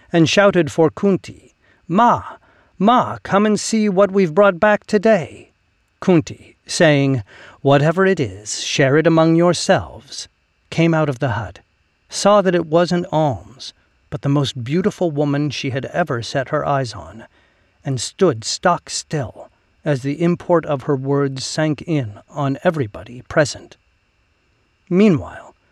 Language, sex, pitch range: English, male, 120-160 Hz